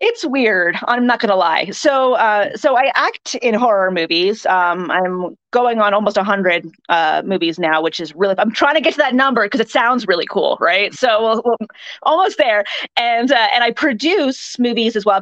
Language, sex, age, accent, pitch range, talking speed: English, female, 30-49, American, 185-240 Hz, 215 wpm